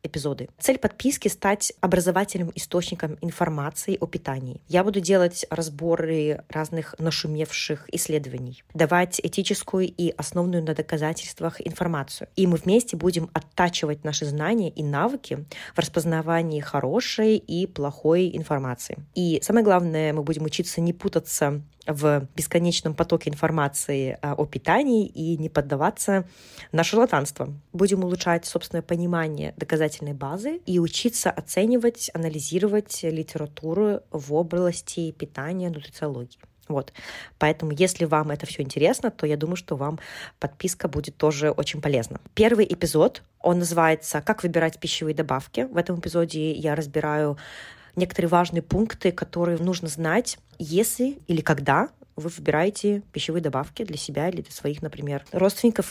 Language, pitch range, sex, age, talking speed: Russian, 150-185 Hz, female, 20-39, 130 wpm